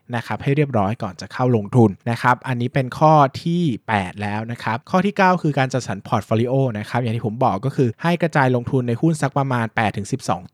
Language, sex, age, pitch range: Thai, male, 20-39, 115-140 Hz